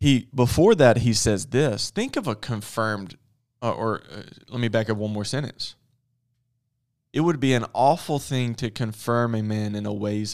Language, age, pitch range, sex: English, 20-39, 110-130 Hz, male